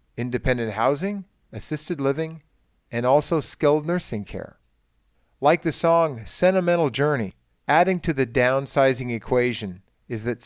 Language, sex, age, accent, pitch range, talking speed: English, male, 40-59, American, 110-155 Hz, 120 wpm